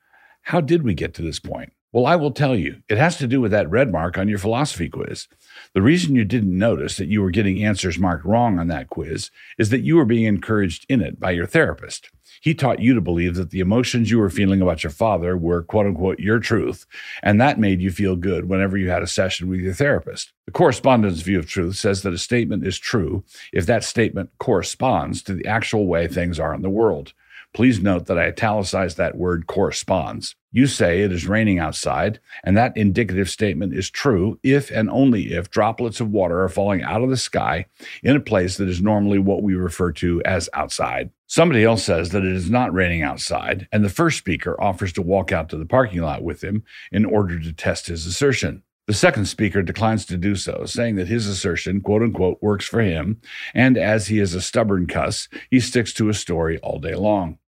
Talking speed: 220 wpm